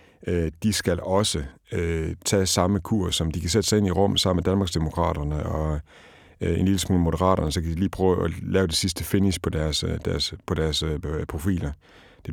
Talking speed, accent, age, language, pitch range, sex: 200 wpm, native, 60-79, Danish, 80-100 Hz, male